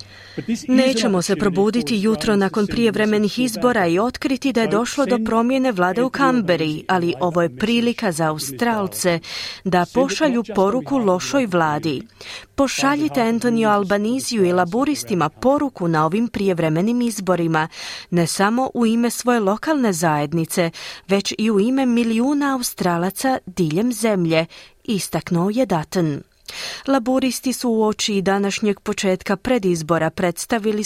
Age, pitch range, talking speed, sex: 30-49, 175-245 Hz, 125 wpm, female